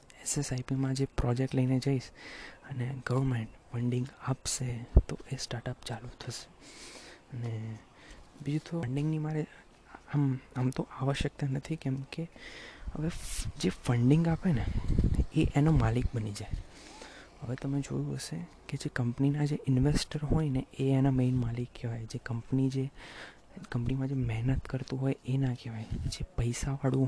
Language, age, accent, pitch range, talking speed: Gujarati, 20-39, native, 125-140 Hz, 120 wpm